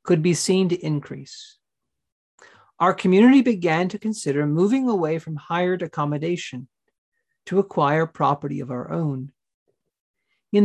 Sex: male